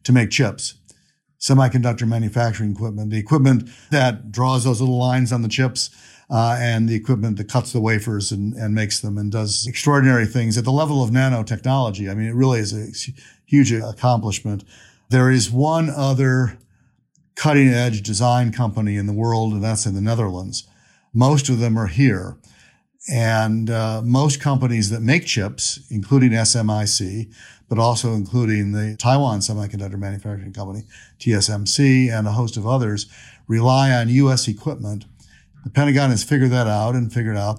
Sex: male